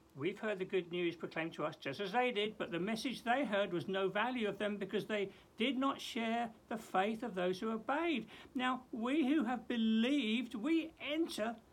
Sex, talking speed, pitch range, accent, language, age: male, 205 wpm, 180-255 Hz, British, English, 60-79